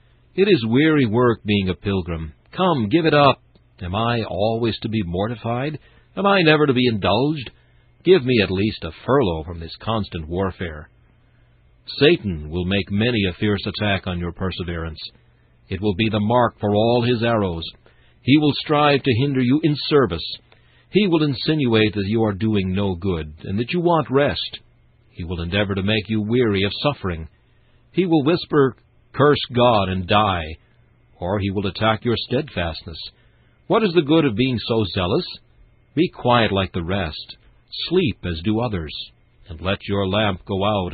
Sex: male